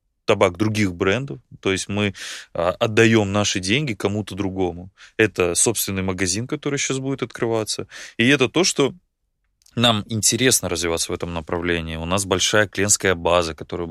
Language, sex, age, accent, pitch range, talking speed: Russian, male, 20-39, native, 90-115 Hz, 150 wpm